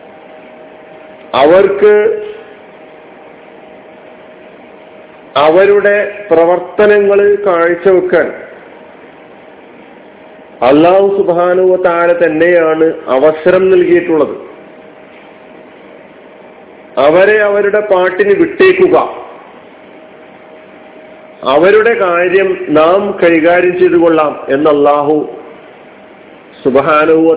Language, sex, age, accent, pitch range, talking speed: Malayalam, male, 50-69, native, 170-215 Hz, 50 wpm